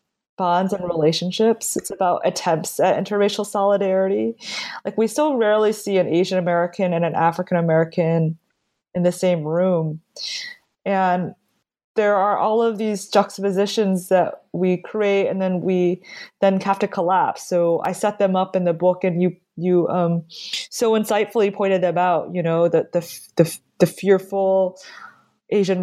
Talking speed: 155 wpm